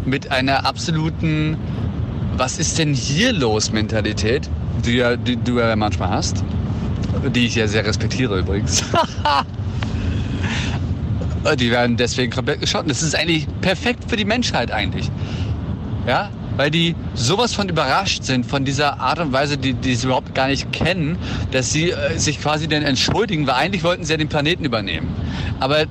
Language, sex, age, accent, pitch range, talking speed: German, male, 40-59, German, 105-140 Hz, 155 wpm